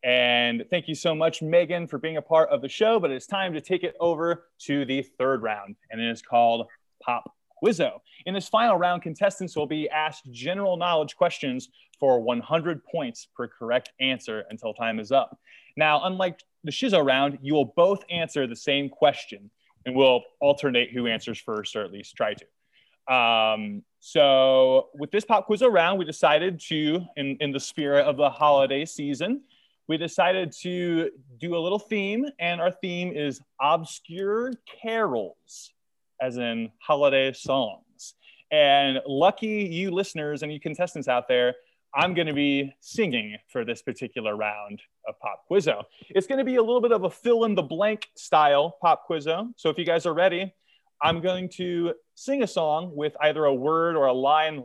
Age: 20-39